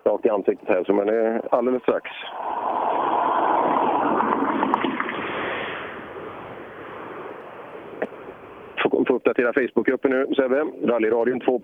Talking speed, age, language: 85 wpm, 40-59, Swedish